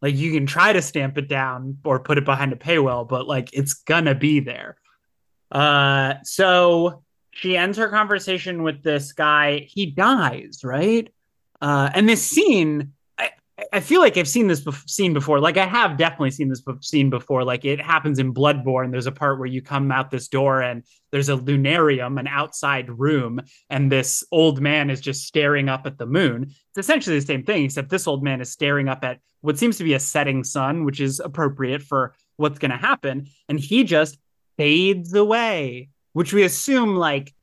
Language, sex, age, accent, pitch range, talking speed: English, male, 20-39, American, 140-175 Hz, 195 wpm